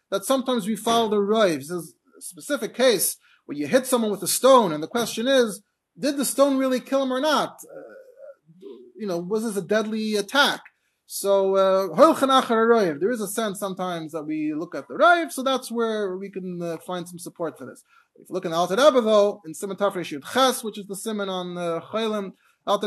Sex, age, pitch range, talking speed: male, 30-49, 195-255 Hz, 215 wpm